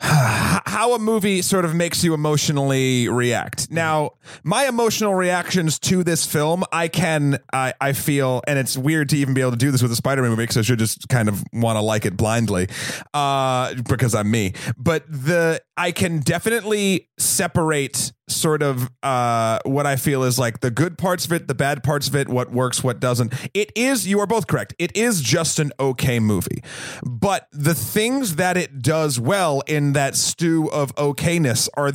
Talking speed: 195 wpm